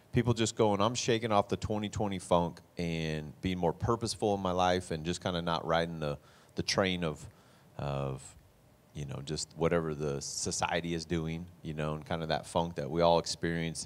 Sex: male